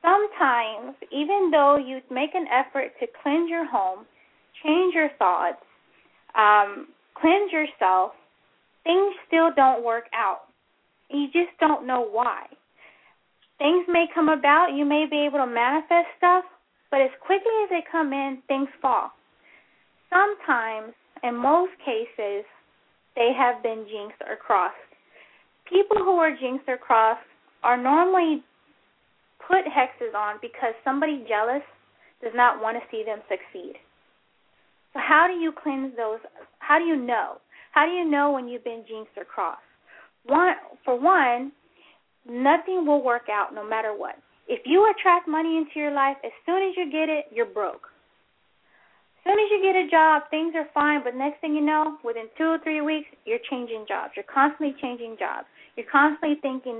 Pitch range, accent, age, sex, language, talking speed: 245-335 Hz, American, 10-29, female, English, 160 wpm